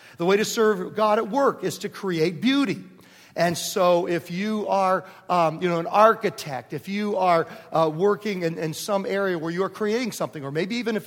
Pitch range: 160-210 Hz